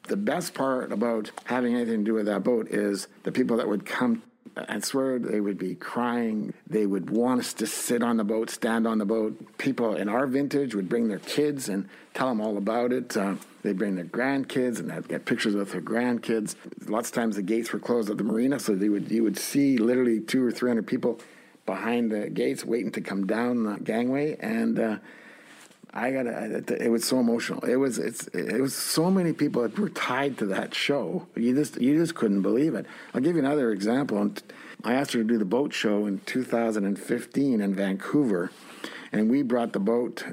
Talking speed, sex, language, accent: 215 wpm, male, English, American